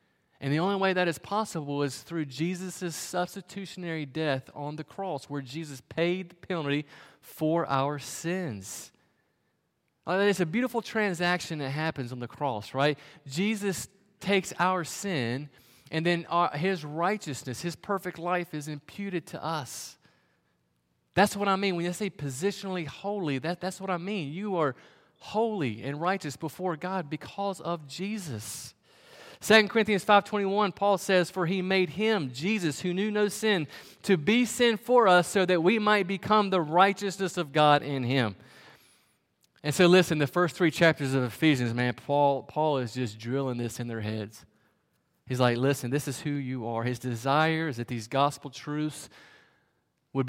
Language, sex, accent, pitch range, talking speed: English, male, American, 135-185 Hz, 160 wpm